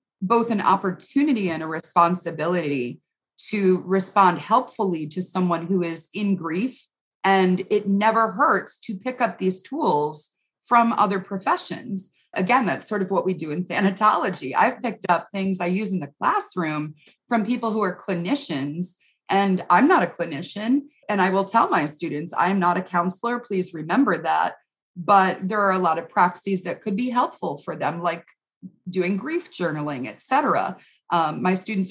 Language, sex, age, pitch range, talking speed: English, female, 30-49, 170-215 Hz, 170 wpm